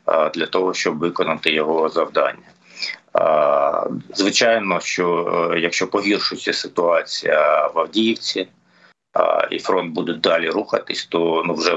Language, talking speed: Ukrainian, 105 wpm